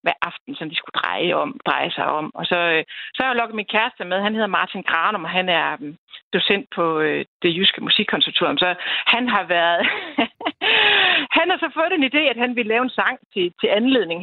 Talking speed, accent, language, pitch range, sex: 205 wpm, native, Danish, 185-245 Hz, female